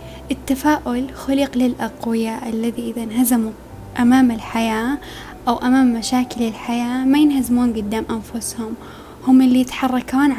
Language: Arabic